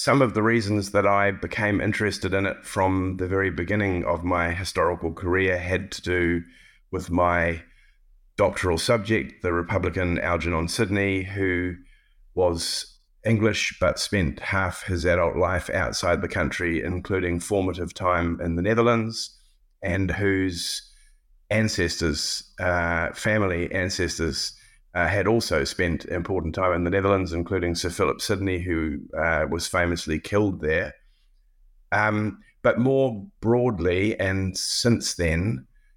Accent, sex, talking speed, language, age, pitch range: Australian, male, 130 wpm, English, 30-49, 85-105 Hz